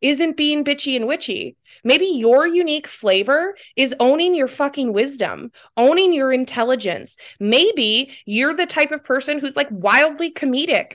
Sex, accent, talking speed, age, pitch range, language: female, American, 150 wpm, 20-39, 210-280 Hz, English